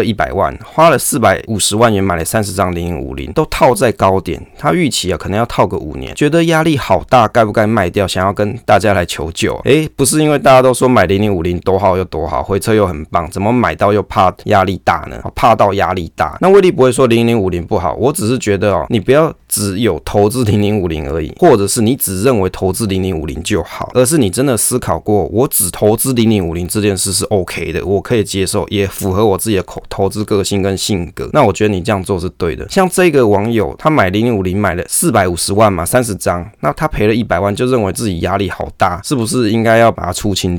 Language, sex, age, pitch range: Chinese, male, 20-39, 95-120 Hz